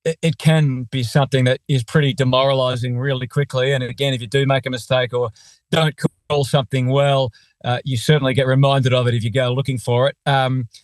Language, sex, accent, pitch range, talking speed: English, male, Australian, 130-150 Hz, 205 wpm